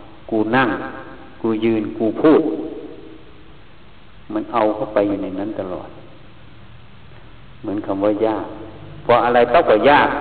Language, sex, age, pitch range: Thai, male, 60-79, 110-130 Hz